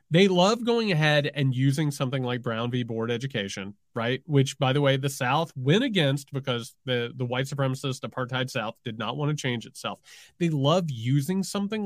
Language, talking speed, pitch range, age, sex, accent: English, 190 wpm, 130-195 Hz, 30-49, male, American